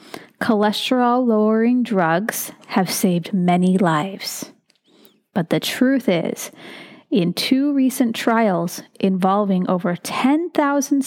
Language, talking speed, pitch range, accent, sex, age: English, 90 wpm, 195-255 Hz, American, female, 30-49